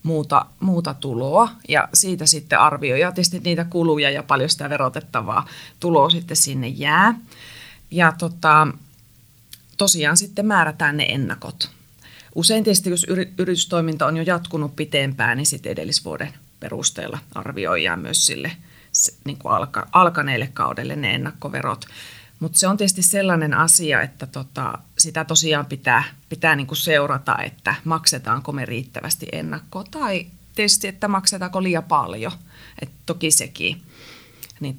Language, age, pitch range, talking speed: Finnish, 30-49, 140-180 Hz, 120 wpm